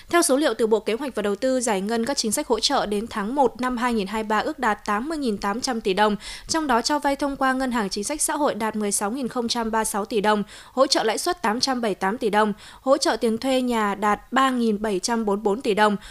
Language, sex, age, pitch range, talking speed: Vietnamese, female, 20-39, 215-255 Hz, 220 wpm